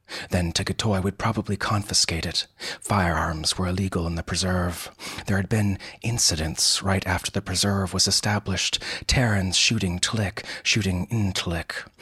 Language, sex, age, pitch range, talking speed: English, male, 30-49, 90-105 Hz, 140 wpm